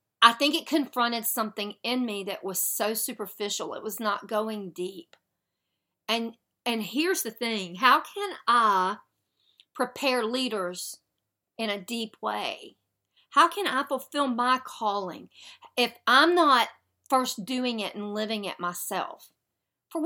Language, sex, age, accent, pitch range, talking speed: English, female, 40-59, American, 205-255 Hz, 140 wpm